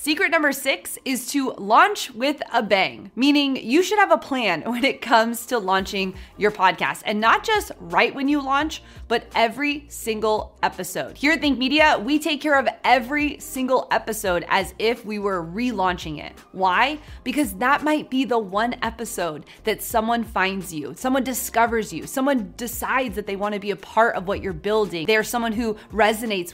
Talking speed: 185 wpm